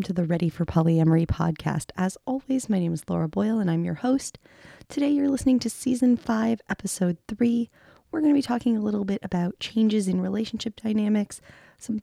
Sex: female